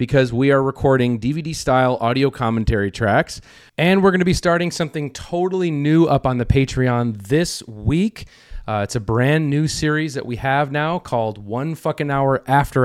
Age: 30-49